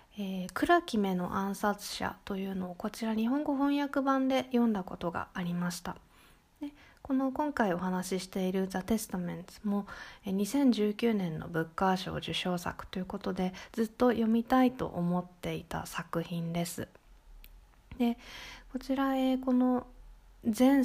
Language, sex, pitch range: Japanese, female, 185-250 Hz